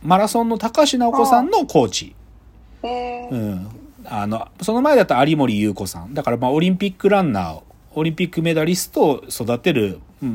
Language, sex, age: Japanese, male, 40-59